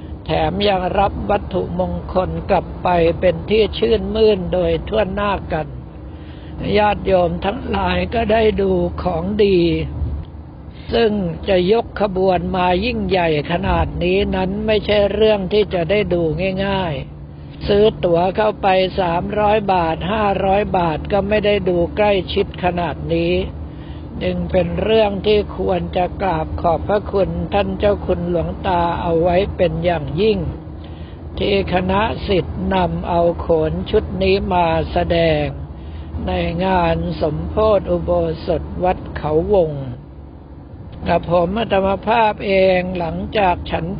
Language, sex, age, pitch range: Thai, male, 60-79, 165-200 Hz